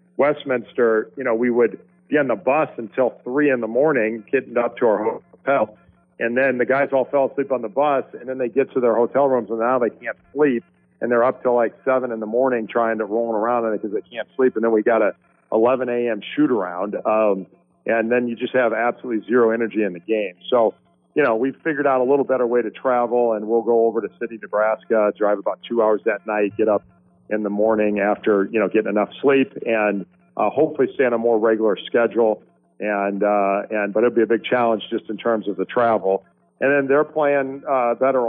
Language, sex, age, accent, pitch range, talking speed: English, male, 50-69, American, 105-125 Hz, 230 wpm